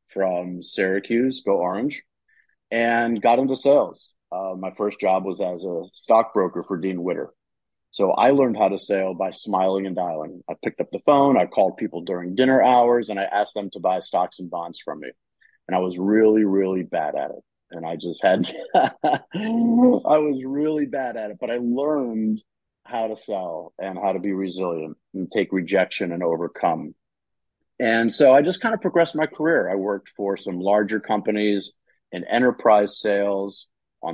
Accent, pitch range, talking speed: American, 95-115 Hz, 185 wpm